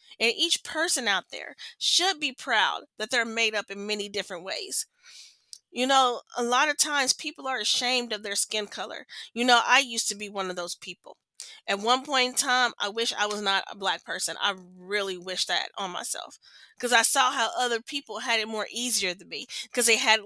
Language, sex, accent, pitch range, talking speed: English, female, American, 210-255 Hz, 215 wpm